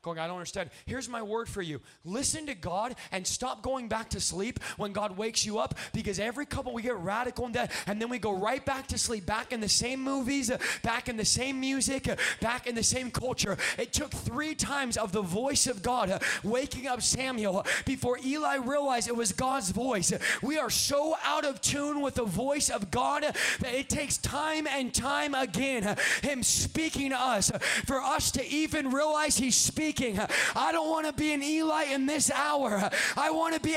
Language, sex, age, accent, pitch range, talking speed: English, male, 20-39, American, 215-300 Hz, 205 wpm